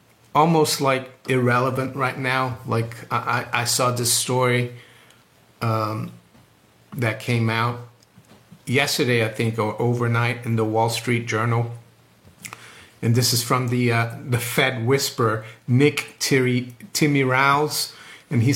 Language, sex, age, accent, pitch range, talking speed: English, male, 50-69, American, 120-145 Hz, 135 wpm